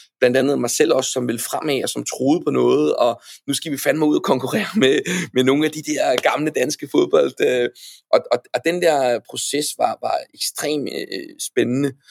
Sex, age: male, 30-49